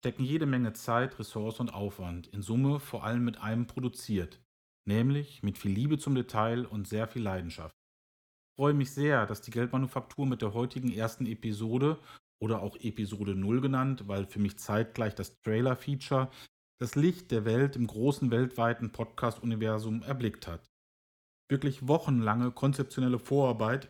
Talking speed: 155 wpm